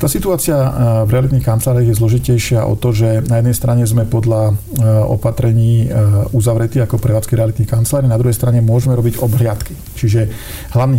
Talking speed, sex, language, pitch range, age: 160 wpm, male, Slovak, 110-125 Hz, 50-69